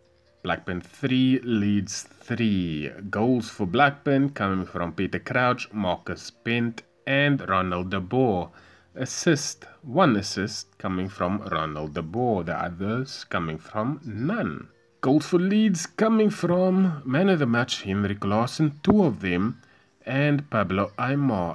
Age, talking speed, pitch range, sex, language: 30-49, 130 wpm, 95-140 Hz, male, English